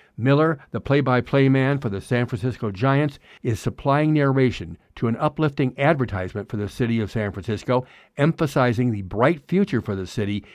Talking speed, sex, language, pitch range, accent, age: 165 wpm, male, English, 110-140 Hz, American, 60-79